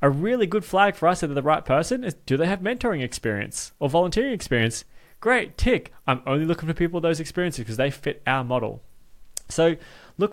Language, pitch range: English, 120-165 Hz